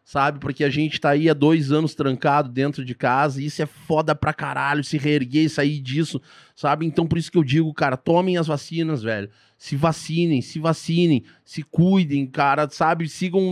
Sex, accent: male, Brazilian